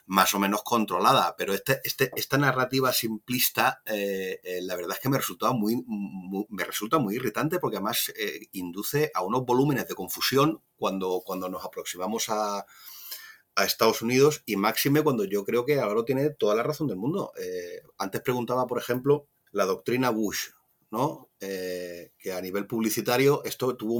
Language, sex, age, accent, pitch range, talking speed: Spanish, male, 30-49, Spanish, 90-130 Hz, 175 wpm